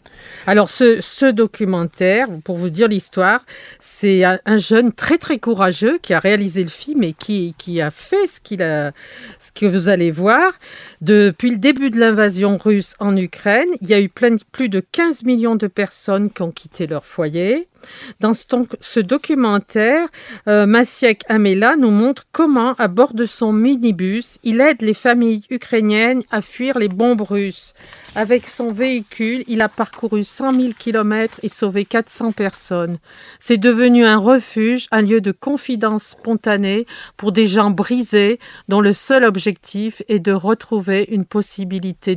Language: French